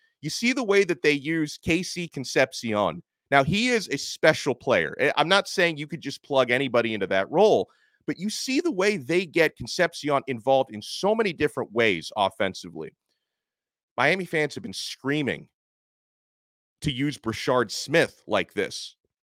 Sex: male